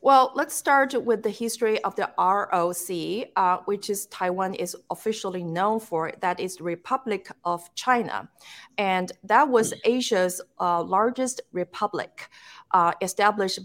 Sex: female